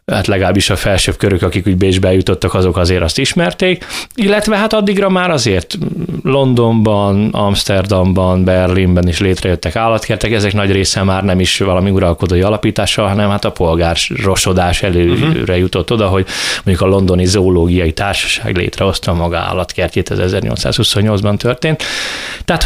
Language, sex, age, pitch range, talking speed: Hungarian, male, 20-39, 95-120 Hz, 140 wpm